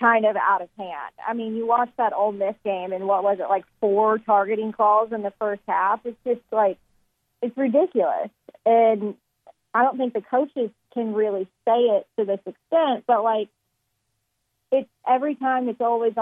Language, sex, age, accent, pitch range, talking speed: English, female, 40-59, American, 190-235 Hz, 185 wpm